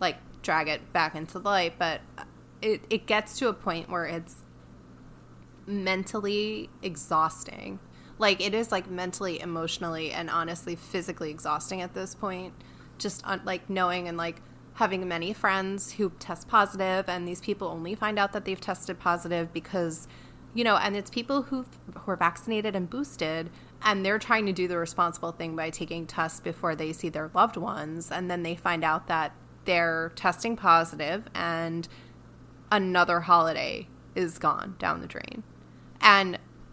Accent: American